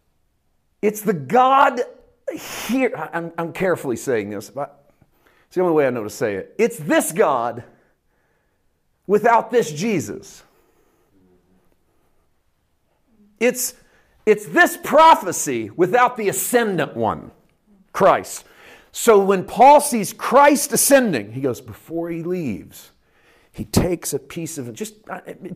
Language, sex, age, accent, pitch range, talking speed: English, male, 40-59, American, 165-255 Hz, 120 wpm